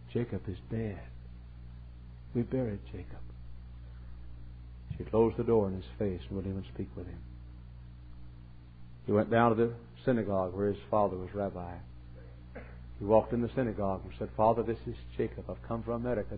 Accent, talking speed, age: American, 165 wpm, 60-79